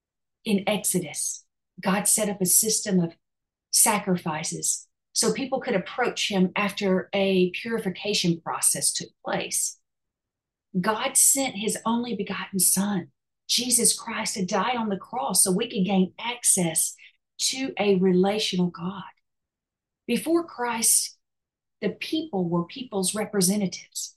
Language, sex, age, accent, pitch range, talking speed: English, female, 40-59, American, 180-210 Hz, 120 wpm